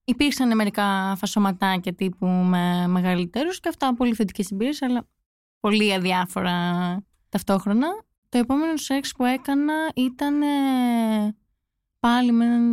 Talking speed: 105 wpm